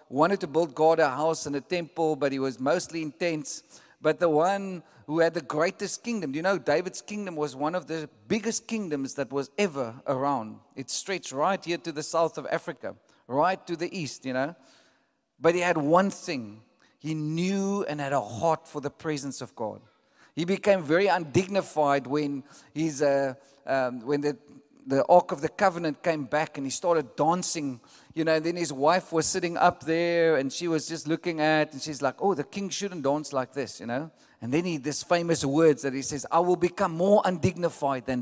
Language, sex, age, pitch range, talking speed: English, male, 40-59, 145-185 Hz, 205 wpm